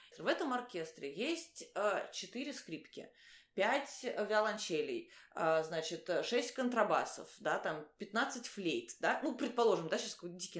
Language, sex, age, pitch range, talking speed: Russian, female, 20-39, 190-275 Hz, 130 wpm